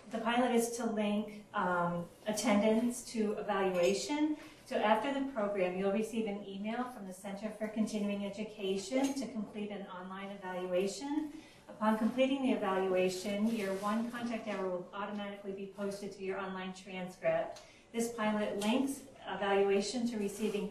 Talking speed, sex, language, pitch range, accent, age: 145 wpm, female, English, 185-225 Hz, American, 30-49